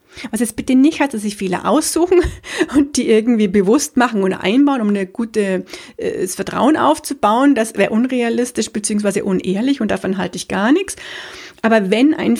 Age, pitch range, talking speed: 40-59, 205-255 Hz, 165 wpm